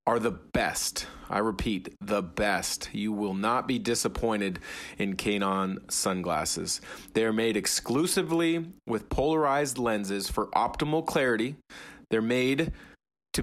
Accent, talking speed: American, 125 wpm